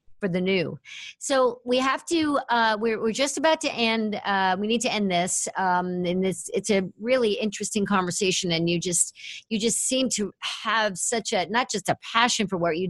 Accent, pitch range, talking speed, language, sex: American, 185-225 Hz, 210 wpm, English, female